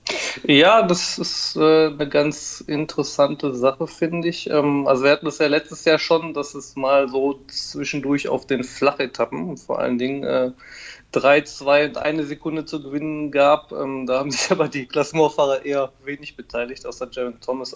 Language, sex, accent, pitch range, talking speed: German, male, German, 130-155 Hz, 175 wpm